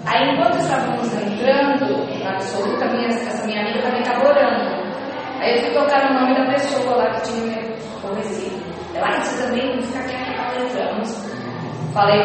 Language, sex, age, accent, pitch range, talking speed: English, female, 20-39, Brazilian, 200-260 Hz, 170 wpm